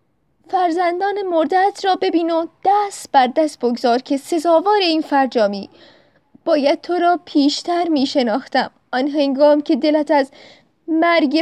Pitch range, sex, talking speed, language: 255-300 Hz, female, 125 wpm, Persian